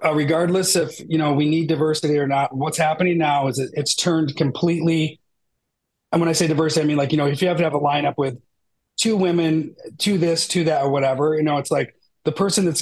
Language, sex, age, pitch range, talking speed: English, male, 40-59, 150-175 Hz, 235 wpm